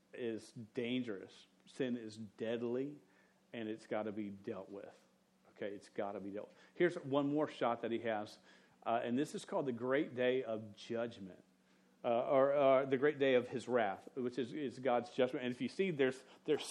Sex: male